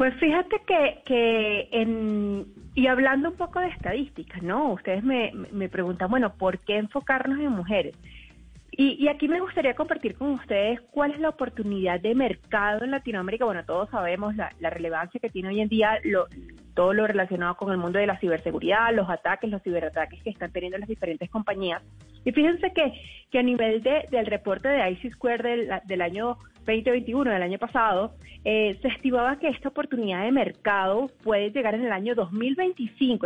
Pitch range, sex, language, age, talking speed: 195-260 Hz, female, Spanish, 30-49, 185 wpm